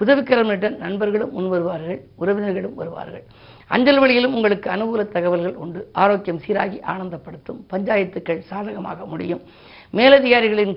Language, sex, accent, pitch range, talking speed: Tamil, female, native, 180-215 Hz, 110 wpm